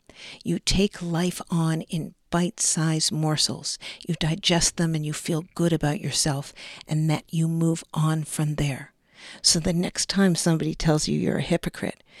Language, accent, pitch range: English, American, 155-190 Hz